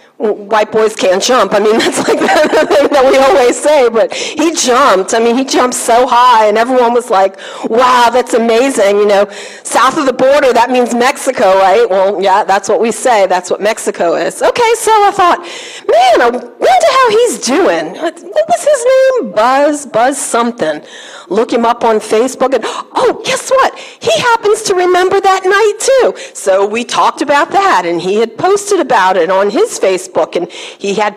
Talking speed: 195 wpm